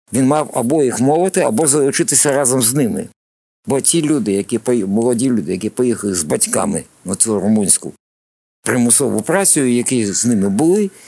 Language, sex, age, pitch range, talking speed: Ukrainian, male, 50-69, 115-160 Hz, 155 wpm